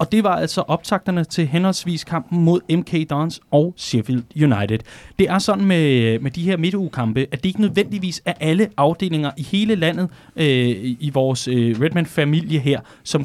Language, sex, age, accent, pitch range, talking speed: Danish, male, 30-49, native, 130-185 Hz, 175 wpm